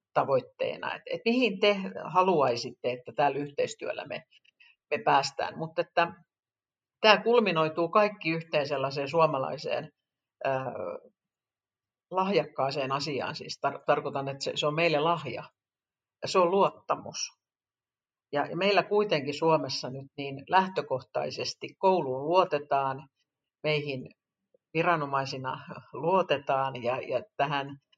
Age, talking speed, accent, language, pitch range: 50-69, 105 wpm, native, Finnish, 140-175 Hz